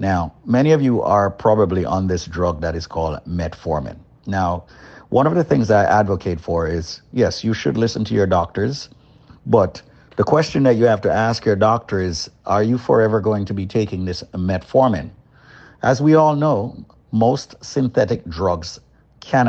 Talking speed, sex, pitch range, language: 180 wpm, male, 90-120 Hz, English